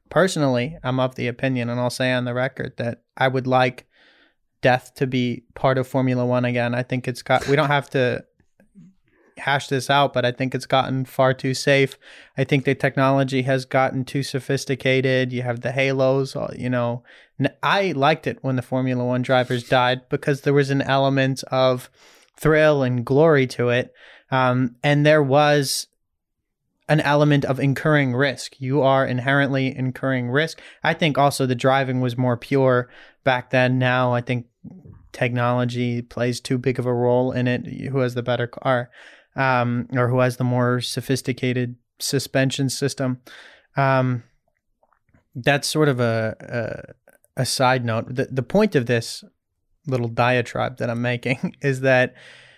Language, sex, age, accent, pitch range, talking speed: English, male, 20-39, American, 125-135 Hz, 165 wpm